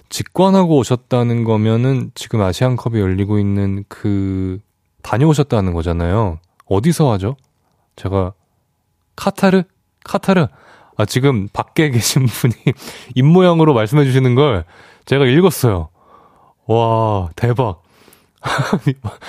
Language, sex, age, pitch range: Korean, male, 20-39, 95-145 Hz